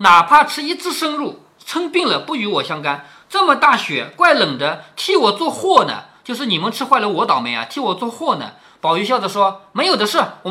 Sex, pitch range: male, 200-295 Hz